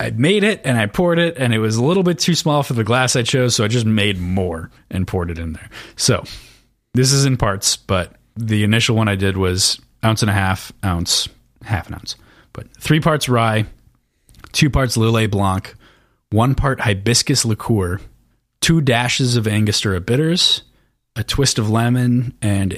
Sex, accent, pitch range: male, American, 100-120 Hz